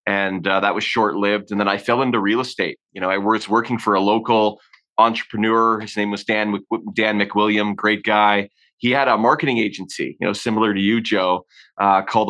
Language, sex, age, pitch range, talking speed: English, male, 30-49, 95-110 Hz, 210 wpm